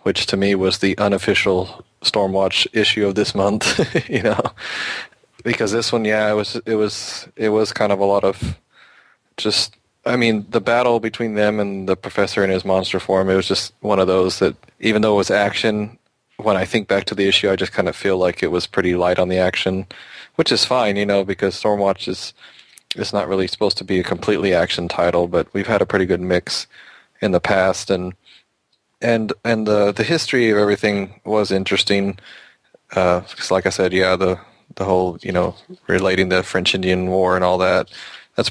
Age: 20-39